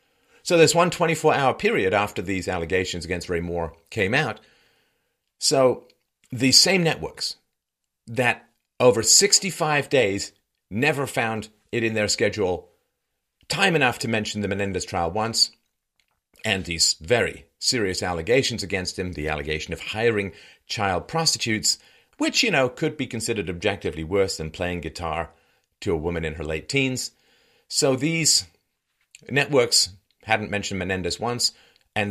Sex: male